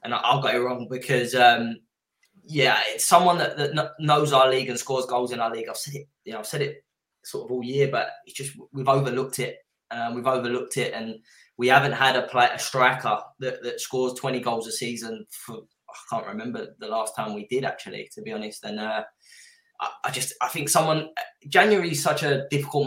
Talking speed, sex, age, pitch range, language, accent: 220 wpm, male, 10-29, 115-135 Hz, English, British